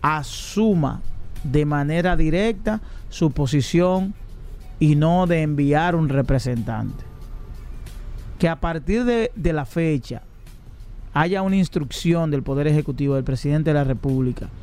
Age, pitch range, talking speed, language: 40-59, 140-180 Hz, 125 wpm, Spanish